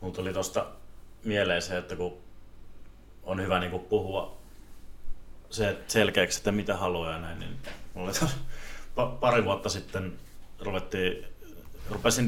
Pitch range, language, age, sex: 90-110 Hz, Finnish, 30-49, male